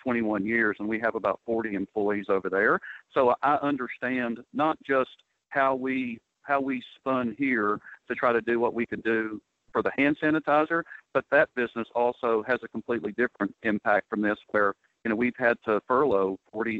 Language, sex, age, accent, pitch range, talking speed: English, male, 50-69, American, 110-135 Hz, 185 wpm